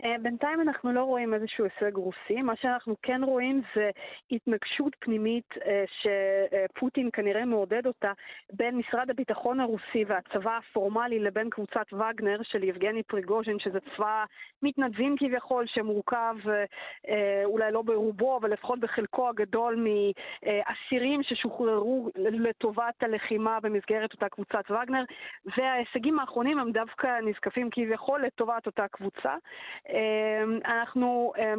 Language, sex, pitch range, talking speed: Hebrew, female, 215-250 Hz, 115 wpm